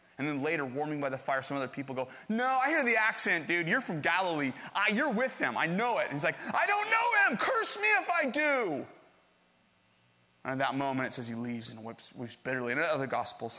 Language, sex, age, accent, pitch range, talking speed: English, male, 30-49, American, 115-150 Hz, 235 wpm